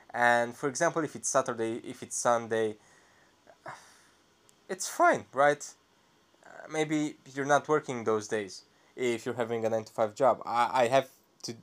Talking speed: 145 wpm